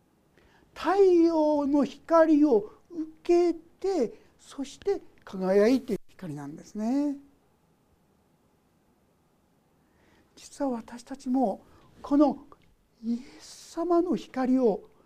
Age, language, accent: 60-79, Japanese, native